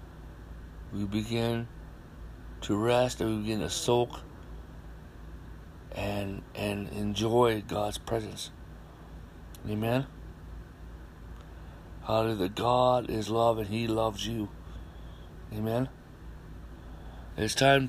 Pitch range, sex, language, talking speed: 80-125 Hz, male, English, 85 wpm